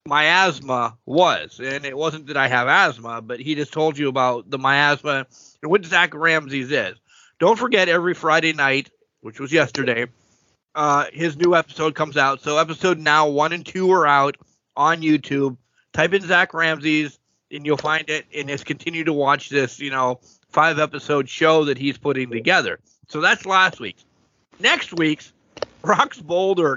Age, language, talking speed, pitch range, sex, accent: 30-49, English, 175 wpm, 135-170 Hz, male, American